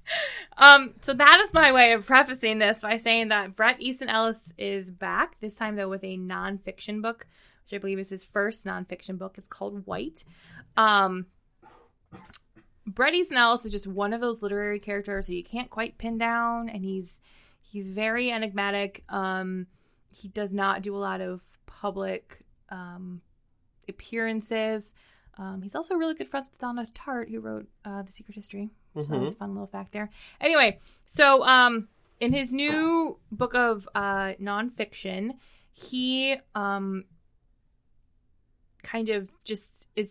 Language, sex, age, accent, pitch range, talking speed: English, female, 20-39, American, 195-230 Hz, 160 wpm